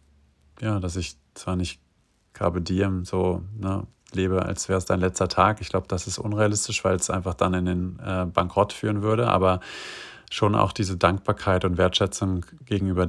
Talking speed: 180 wpm